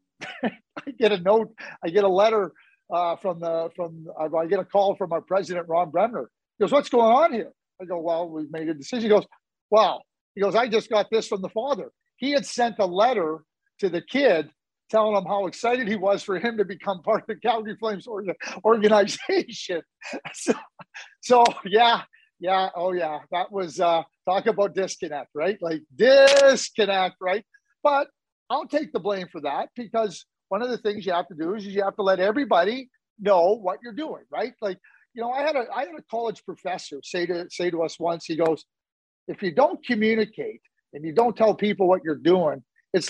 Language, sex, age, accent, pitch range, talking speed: English, male, 50-69, American, 175-225 Hz, 205 wpm